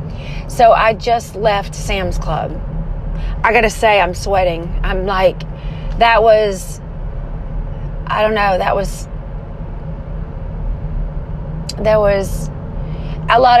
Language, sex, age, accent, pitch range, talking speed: English, female, 30-49, American, 170-225 Hz, 110 wpm